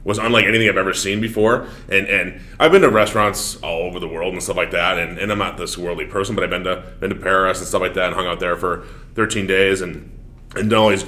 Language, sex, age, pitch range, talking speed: English, male, 30-49, 95-110 Hz, 275 wpm